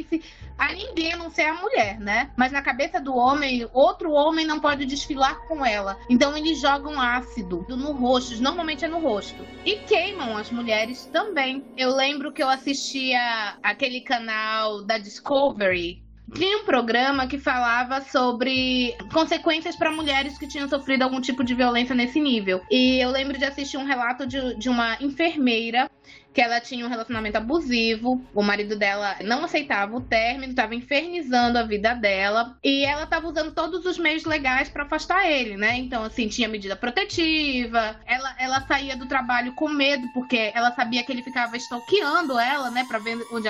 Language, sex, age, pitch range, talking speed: Portuguese, female, 20-39, 235-290 Hz, 175 wpm